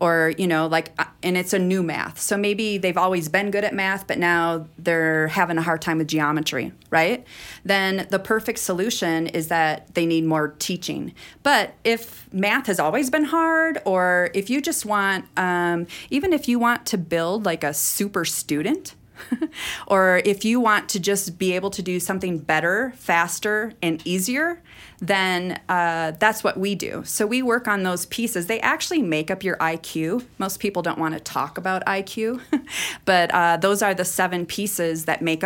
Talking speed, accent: 185 wpm, American